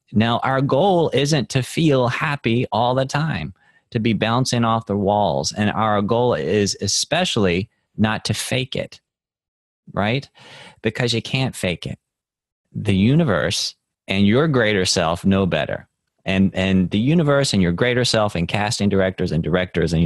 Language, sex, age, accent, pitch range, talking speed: English, male, 30-49, American, 95-140 Hz, 160 wpm